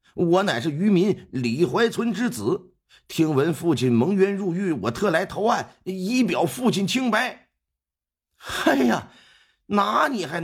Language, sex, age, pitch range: Chinese, male, 50-69, 135-200 Hz